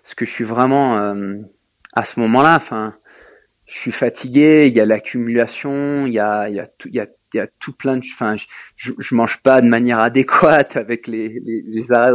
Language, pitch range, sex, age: French, 115-140 Hz, male, 20-39